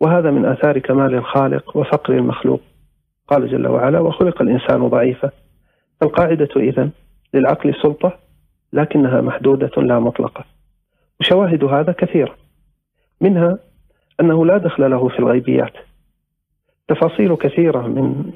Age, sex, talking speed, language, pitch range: 40-59, male, 110 wpm, Arabic, 130-160 Hz